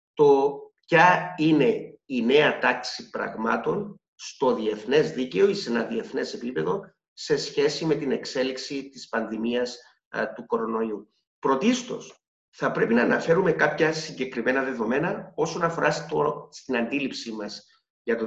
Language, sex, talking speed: Greek, male, 135 wpm